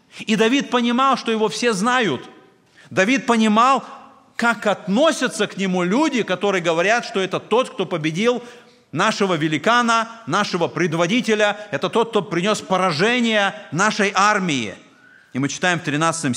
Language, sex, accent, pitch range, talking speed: Russian, male, native, 140-215 Hz, 135 wpm